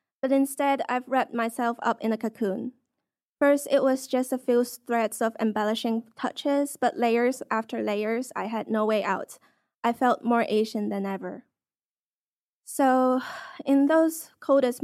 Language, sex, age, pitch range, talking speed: English, female, 10-29, 215-260 Hz, 155 wpm